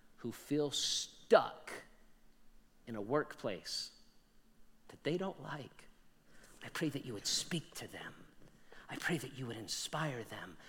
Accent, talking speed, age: American, 140 wpm, 50-69